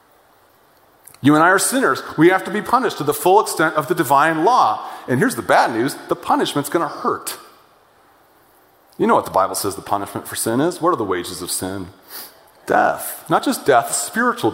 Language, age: English, 40-59